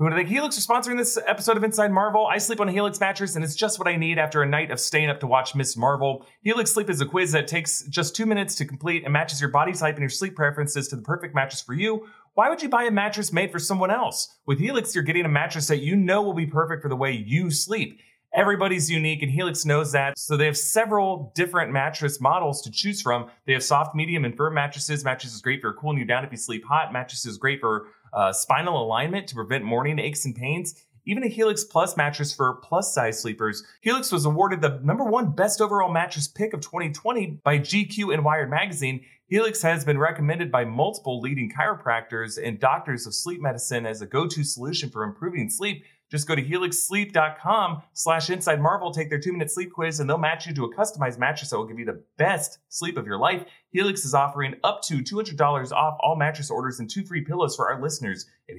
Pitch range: 135-185 Hz